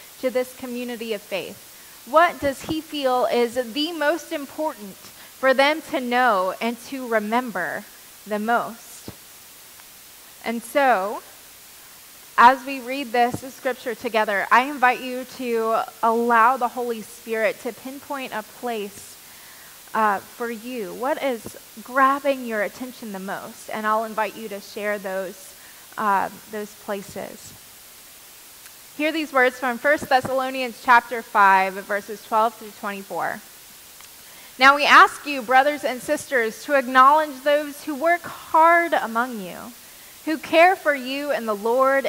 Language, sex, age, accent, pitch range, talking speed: English, female, 20-39, American, 220-280 Hz, 135 wpm